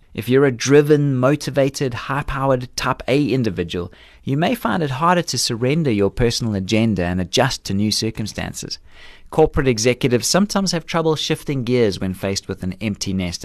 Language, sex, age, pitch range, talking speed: English, male, 30-49, 100-155 Hz, 160 wpm